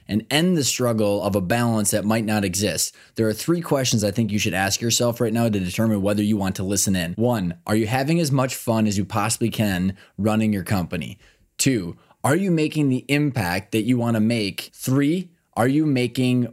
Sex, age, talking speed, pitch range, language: male, 20-39, 215 wpm, 105-135 Hz, English